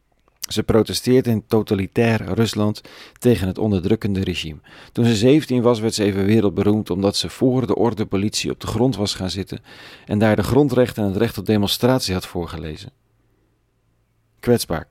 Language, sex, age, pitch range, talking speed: Dutch, male, 40-59, 90-115 Hz, 165 wpm